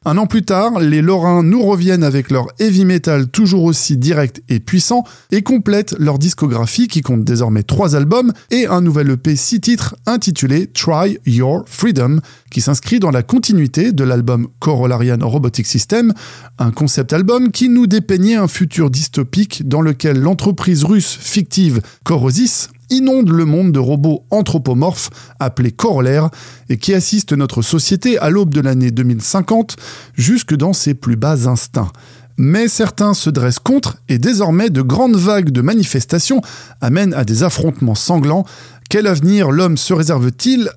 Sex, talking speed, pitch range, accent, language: male, 165 wpm, 130-195 Hz, French, French